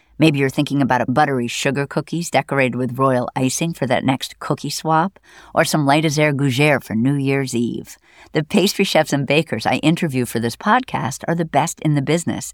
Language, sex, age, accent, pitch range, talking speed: English, female, 50-69, American, 130-175 Hz, 205 wpm